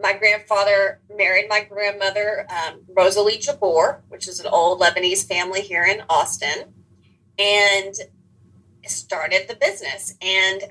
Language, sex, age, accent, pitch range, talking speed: English, female, 30-49, American, 190-225 Hz, 125 wpm